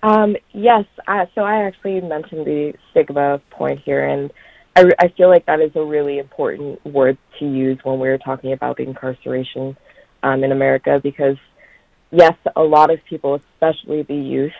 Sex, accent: female, American